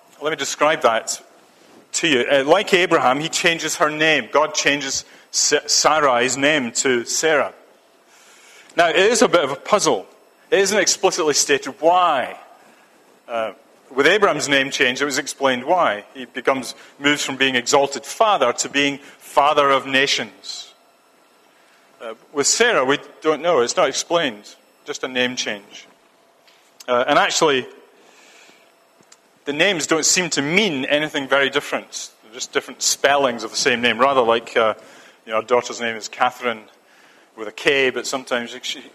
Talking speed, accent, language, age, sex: 155 wpm, British, English, 40-59, male